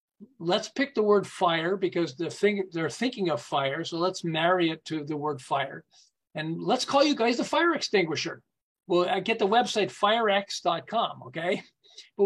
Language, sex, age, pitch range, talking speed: English, male, 40-59, 175-225 Hz, 175 wpm